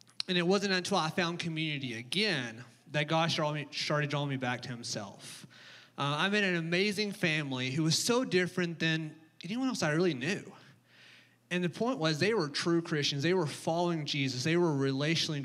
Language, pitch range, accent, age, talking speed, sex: English, 140-175 Hz, American, 30-49, 185 wpm, male